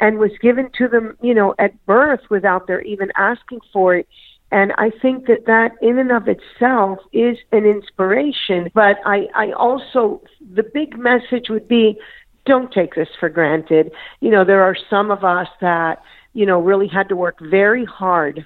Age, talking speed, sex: 50-69, 185 wpm, female